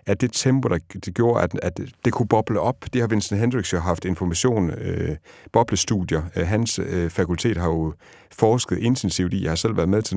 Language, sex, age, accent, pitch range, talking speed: Danish, male, 60-79, native, 85-110 Hz, 200 wpm